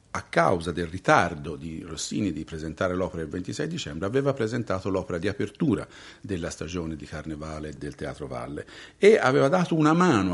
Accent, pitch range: native, 85-115 Hz